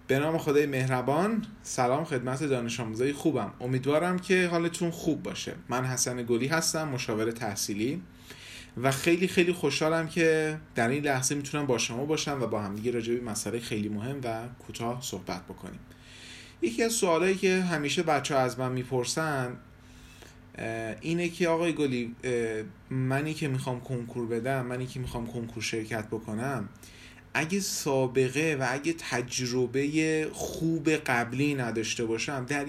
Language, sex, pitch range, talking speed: Persian, male, 115-150 Hz, 145 wpm